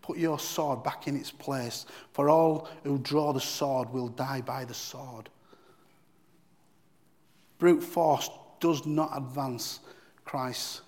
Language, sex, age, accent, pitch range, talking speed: English, male, 40-59, British, 130-160 Hz, 130 wpm